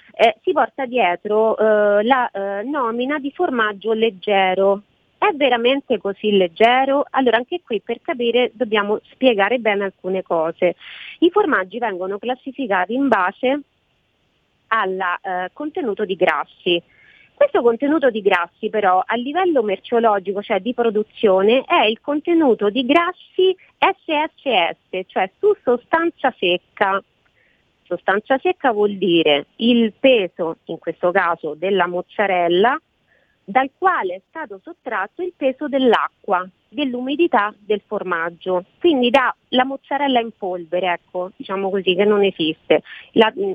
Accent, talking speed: native, 125 wpm